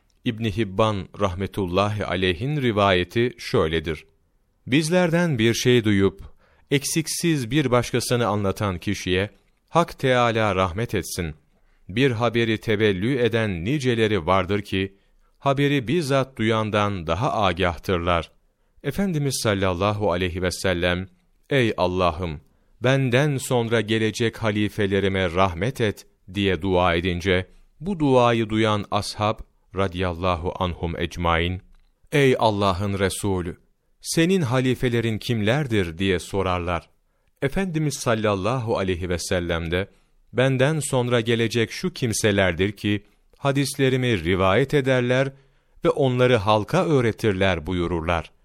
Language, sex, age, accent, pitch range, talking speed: Turkish, male, 40-59, native, 90-125 Hz, 100 wpm